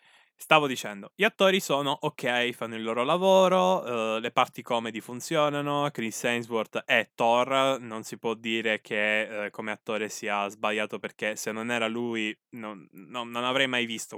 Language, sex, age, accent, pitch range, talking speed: Italian, male, 10-29, native, 110-155 Hz, 170 wpm